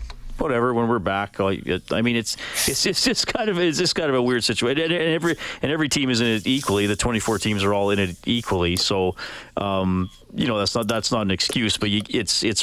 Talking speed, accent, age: 240 wpm, American, 40-59